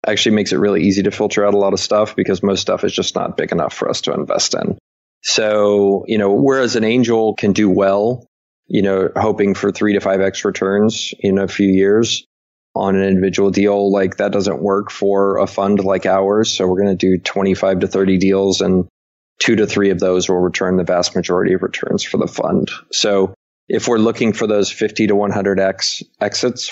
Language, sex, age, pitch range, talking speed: English, male, 20-39, 95-105 Hz, 210 wpm